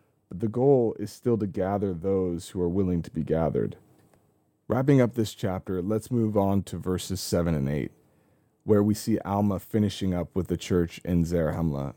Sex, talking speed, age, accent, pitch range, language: male, 185 wpm, 30-49, American, 90-110 Hz, English